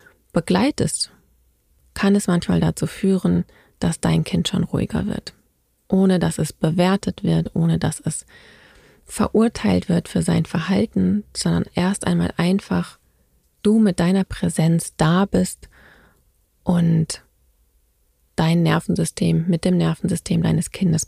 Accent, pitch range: German, 160-195 Hz